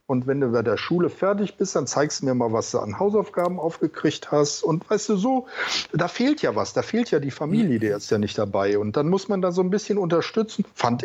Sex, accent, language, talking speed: male, German, German, 255 wpm